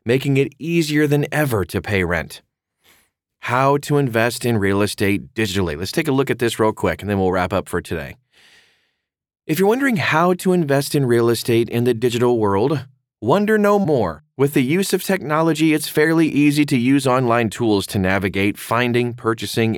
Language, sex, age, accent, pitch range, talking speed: English, male, 30-49, American, 100-145 Hz, 190 wpm